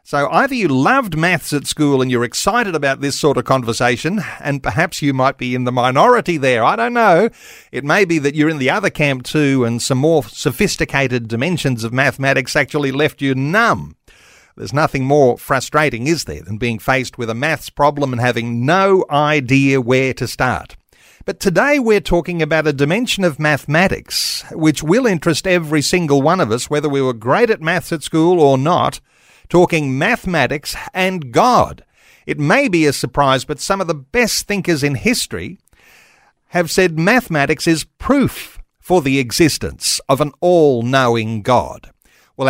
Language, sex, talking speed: English, male, 180 wpm